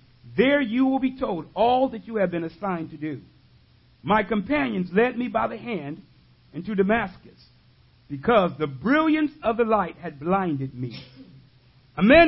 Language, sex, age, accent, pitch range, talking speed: English, male, 50-69, American, 165-245 Hz, 160 wpm